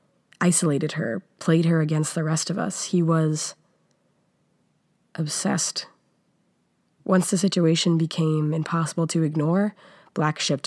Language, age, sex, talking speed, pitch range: English, 20-39, female, 120 wpm, 155-190 Hz